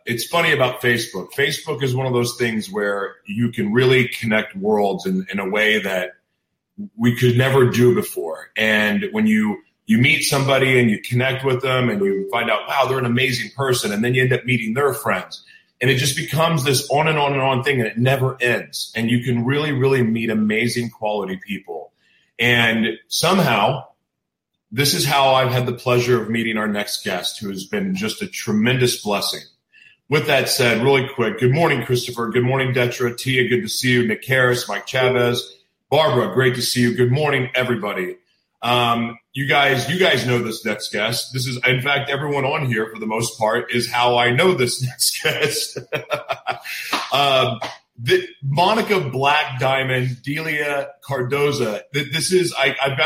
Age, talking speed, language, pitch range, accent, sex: 40-59, 185 wpm, English, 120-140 Hz, American, male